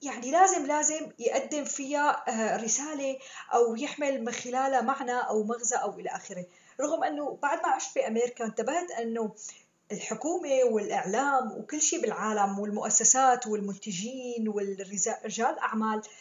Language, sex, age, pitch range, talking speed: Arabic, female, 20-39, 225-275 Hz, 125 wpm